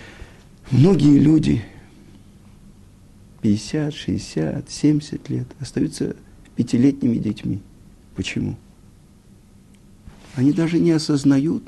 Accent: native